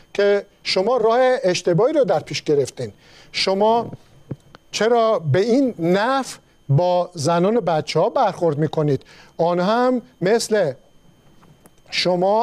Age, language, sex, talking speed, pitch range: 50-69, Persian, male, 120 wpm, 165-235 Hz